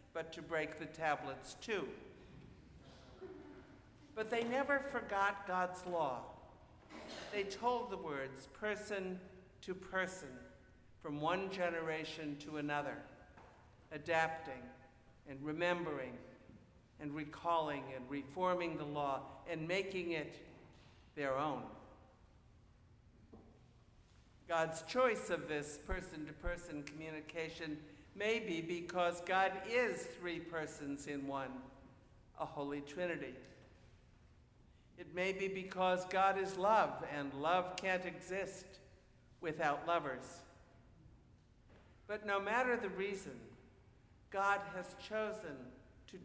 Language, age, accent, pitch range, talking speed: English, 60-79, American, 135-190 Hz, 100 wpm